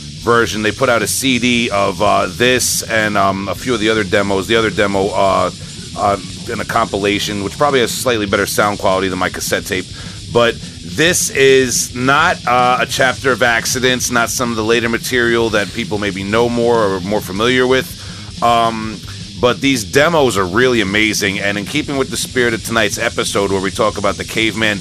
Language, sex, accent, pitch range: English, male, American, 100-120 Hz